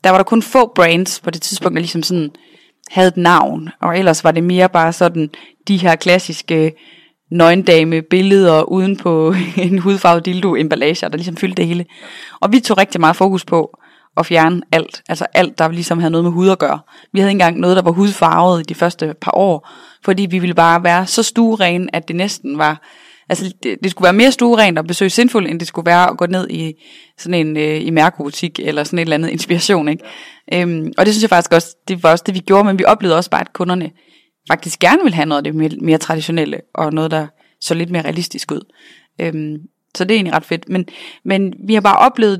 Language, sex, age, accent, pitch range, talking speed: Danish, female, 20-39, native, 165-195 Hz, 230 wpm